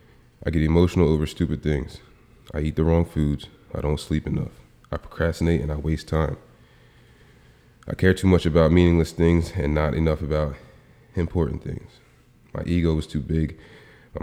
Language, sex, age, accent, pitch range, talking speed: English, male, 30-49, American, 75-95 Hz, 170 wpm